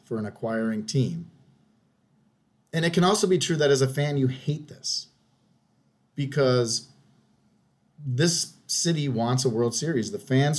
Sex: male